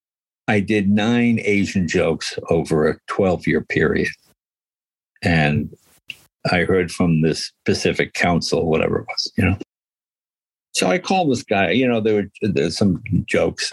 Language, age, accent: English, 60-79, American